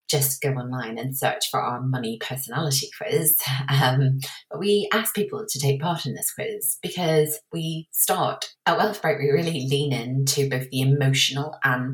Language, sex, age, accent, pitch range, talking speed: English, female, 30-49, British, 135-165 Hz, 165 wpm